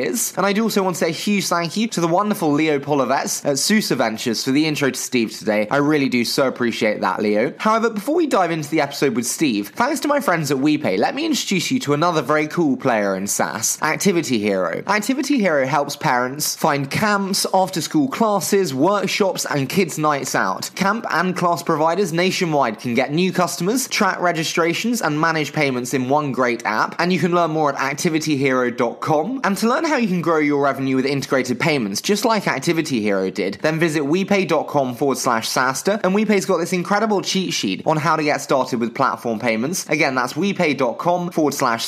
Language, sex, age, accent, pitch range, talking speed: English, male, 20-39, British, 135-190 Hz, 205 wpm